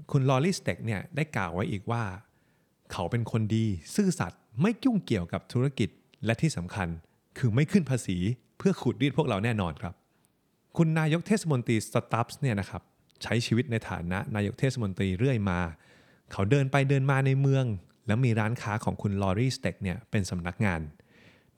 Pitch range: 100-135 Hz